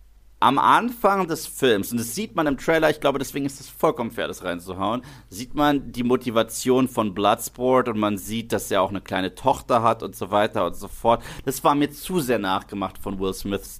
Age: 30-49